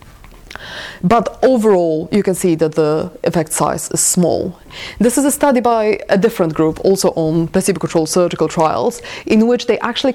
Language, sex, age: English, female, 30-49